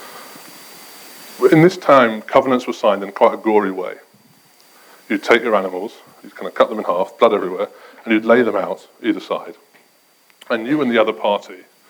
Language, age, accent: English, 30-49, British